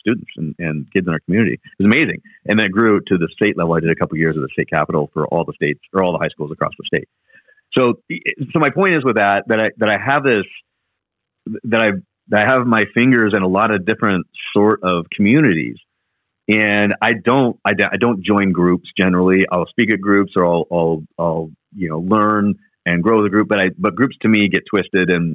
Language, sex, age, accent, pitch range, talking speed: English, male, 40-59, American, 90-115 Hz, 235 wpm